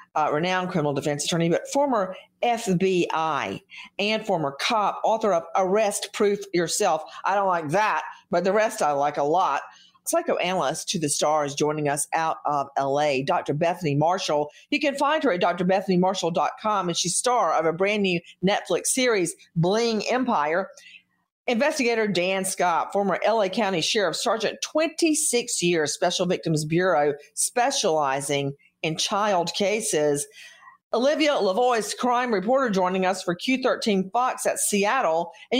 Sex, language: female, English